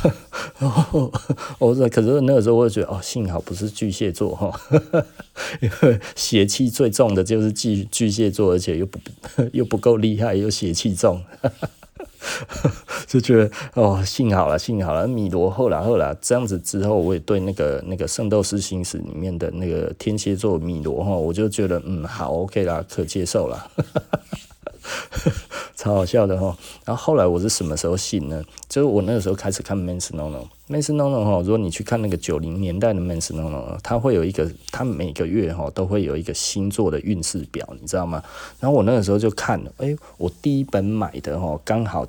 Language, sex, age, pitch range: Chinese, male, 20-39, 90-115 Hz